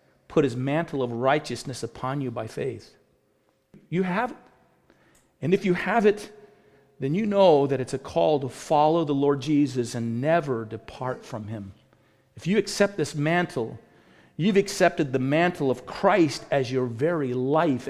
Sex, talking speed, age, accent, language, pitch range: male, 165 wpm, 40-59, American, English, 120-160 Hz